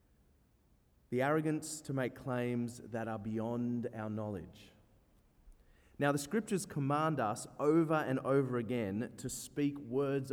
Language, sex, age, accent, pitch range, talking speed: English, male, 30-49, Australian, 105-145 Hz, 130 wpm